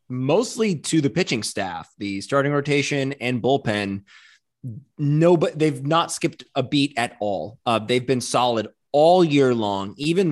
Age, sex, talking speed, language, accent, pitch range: 20-39, male, 155 wpm, English, American, 110-140 Hz